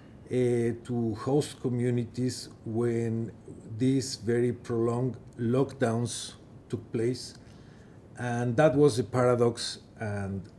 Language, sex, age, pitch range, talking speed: English, male, 50-69, 110-130 Hz, 95 wpm